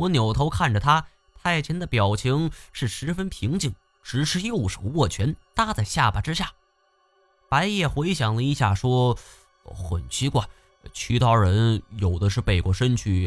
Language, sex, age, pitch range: Chinese, male, 20-39, 100-155 Hz